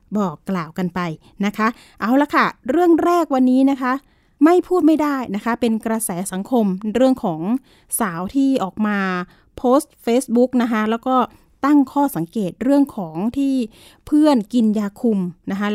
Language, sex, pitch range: Thai, female, 210-265 Hz